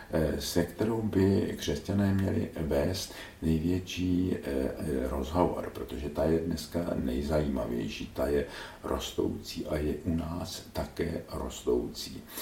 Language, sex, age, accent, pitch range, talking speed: Czech, male, 60-79, native, 75-95 Hz, 105 wpm